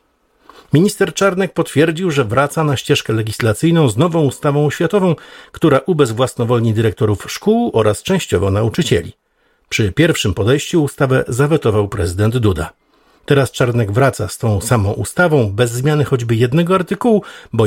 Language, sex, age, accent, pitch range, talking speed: Polish, male, 50-69, native, 105-145 Hz, 130 wpm